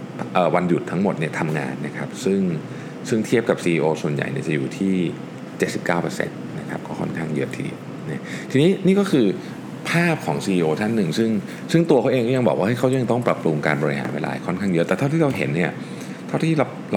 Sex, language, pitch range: male, Thai, 80-120 Hz